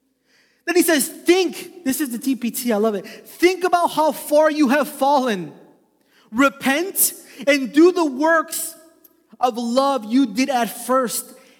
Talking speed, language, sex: 150 wpm, English, male